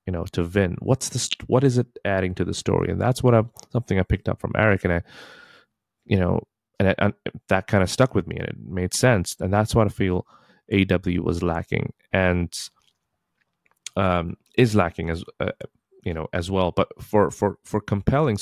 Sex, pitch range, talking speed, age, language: male, 85-100 Hz, 210 wpm, 20-39, English